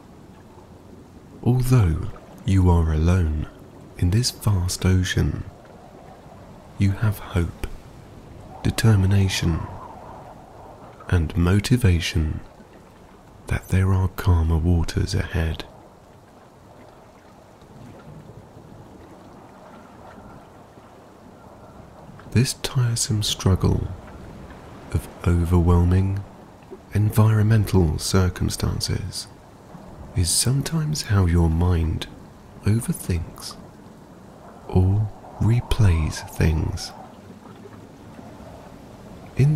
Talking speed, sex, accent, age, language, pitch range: 55 wpm, male, British, 40-59, English, 90-110 Hz